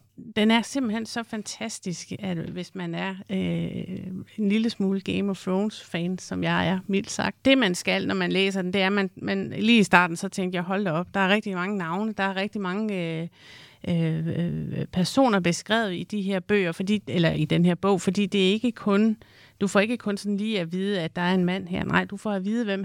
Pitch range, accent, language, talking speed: 175-205 Hz, native, Danish, 235 wpm